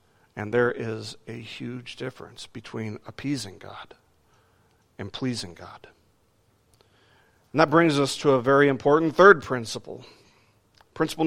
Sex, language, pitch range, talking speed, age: male, English, 110-150 Hz, 120 wpm, 40-59